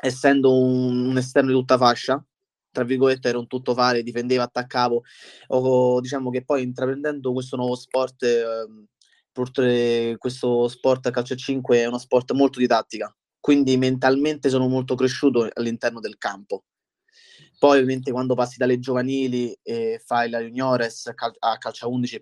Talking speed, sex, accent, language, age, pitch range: 155 wpm, male, native, Italian, 20-39, 120-130 Hz